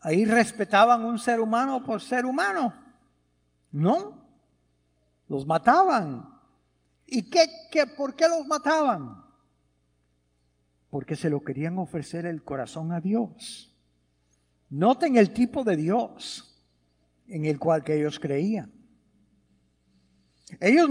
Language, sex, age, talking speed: English, male, 60-79, 110 wpm